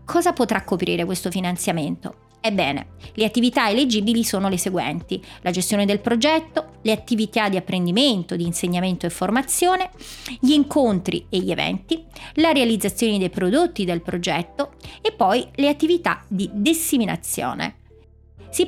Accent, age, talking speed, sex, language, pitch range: native, 30-49, 135 wpm, female, Italian, 185-265 Hz